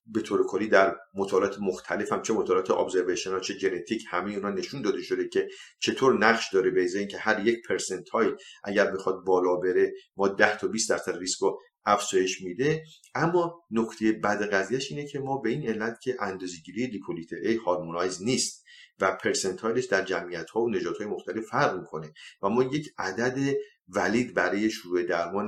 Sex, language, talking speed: male, English, 170 wpm